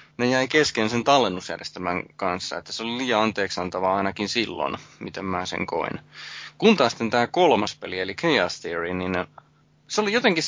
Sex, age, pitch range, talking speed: male, 20-39, 100-145 Hz, 165 wpm